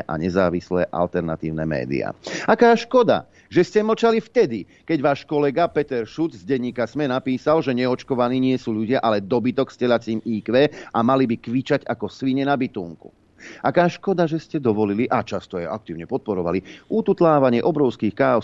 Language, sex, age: Slovak, male, 40-59